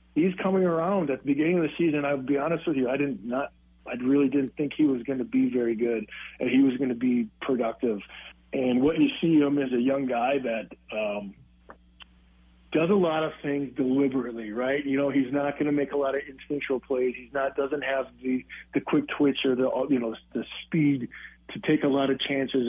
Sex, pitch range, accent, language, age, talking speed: male, 120-140 Hz, American, English, 40-59, 225 wpm